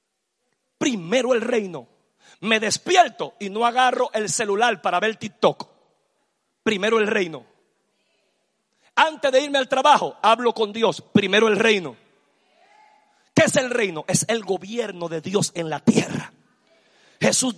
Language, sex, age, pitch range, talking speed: Spanish, male, 40-59, 215-270 Hz, 135 wpm